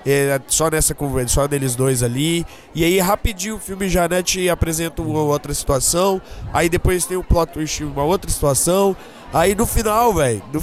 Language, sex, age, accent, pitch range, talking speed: Portuguese, male, 20-39, Brazilian, 130-170 Hz, 200 wpm